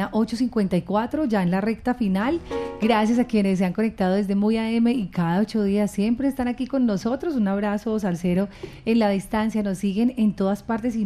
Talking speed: 190 wpm